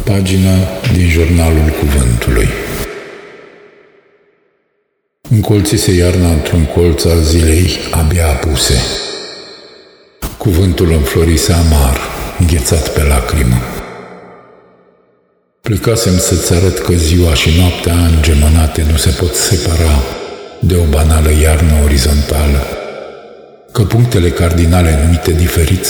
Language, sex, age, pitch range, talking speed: Romanian, male, 50-69, 75-90 Hz, 95 wpm